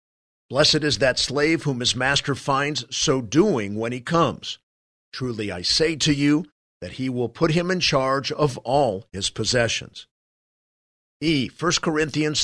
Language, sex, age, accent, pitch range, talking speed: English, male, 50-69, American, 115-150 Hz, 155 wpm